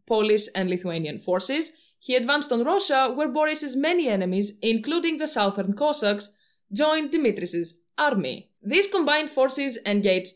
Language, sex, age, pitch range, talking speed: English, female, 20-39, 200-280 Hz, 135 wpm